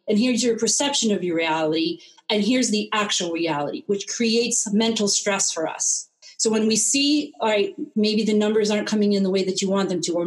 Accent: American